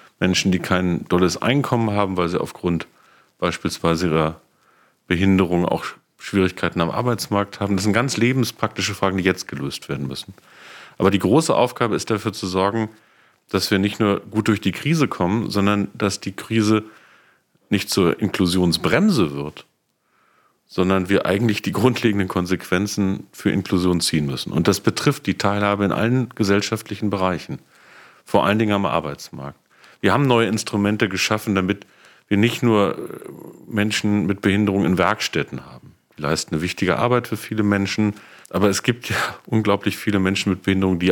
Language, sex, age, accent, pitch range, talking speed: German, male, 40-59, German, 90-110 Hz, 160 wpm